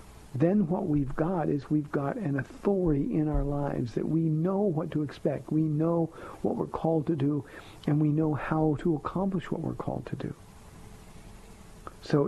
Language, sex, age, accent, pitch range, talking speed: English, male, 50-69, American, 115-180 Hz, 180 wpm